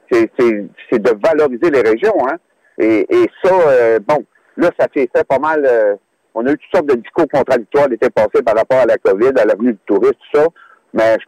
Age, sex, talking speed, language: 60-79, male, 230 wpm, French